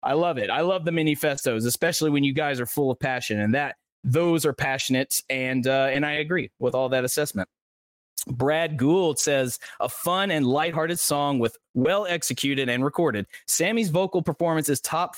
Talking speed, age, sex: 185 wpm, 30-49, male